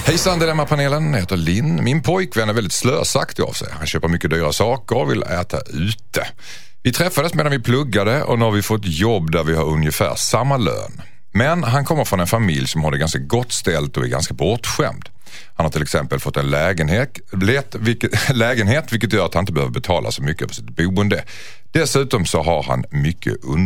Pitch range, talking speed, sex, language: 85-135 Hz, 210 wpm, male, Swedish